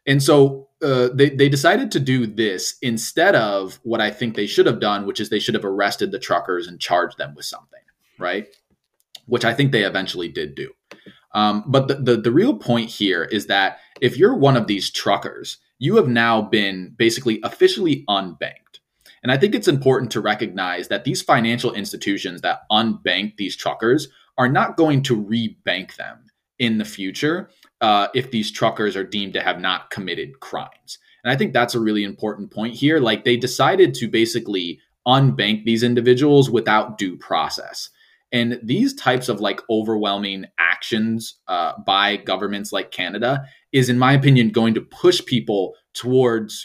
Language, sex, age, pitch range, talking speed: English, male, 20-39, 105-130 Hz, 180 wpm